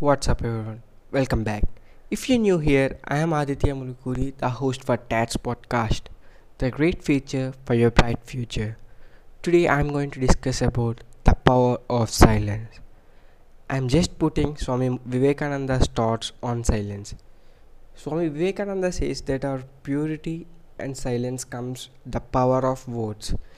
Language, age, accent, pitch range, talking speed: English, 20-39, Indian, 115-140 Hz, 145 wpm